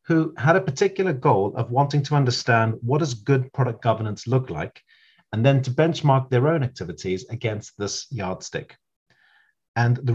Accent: British